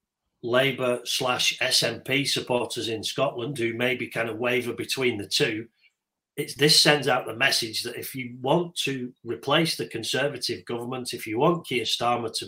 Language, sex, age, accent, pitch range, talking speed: English, male, 40-59, British, 115-140 Hz, 170 wpm